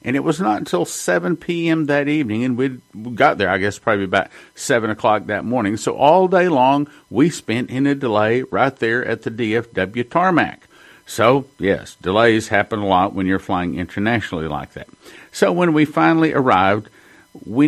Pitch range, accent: 105-140 Hz, American